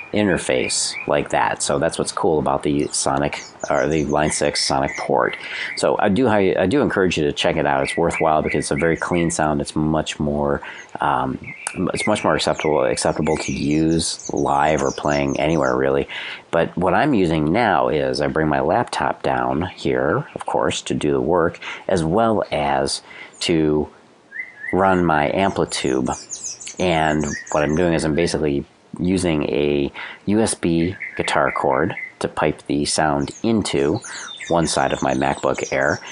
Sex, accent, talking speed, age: male, American, 165 wpm, 40-59